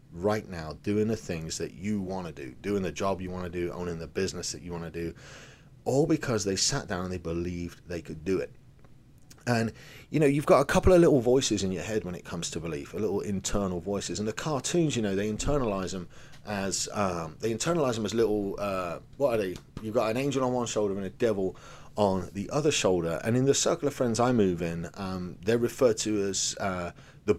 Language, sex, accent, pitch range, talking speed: English, male, British, 90-130 Hz, 235 wpm